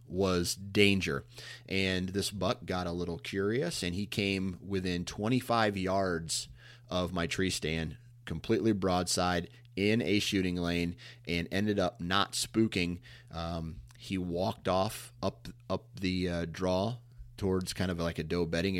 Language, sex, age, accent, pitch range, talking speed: English, male, 30-49, American, 85-120 Hz, 145 wpm